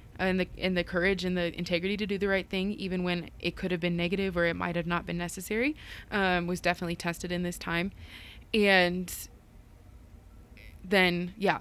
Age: 20-39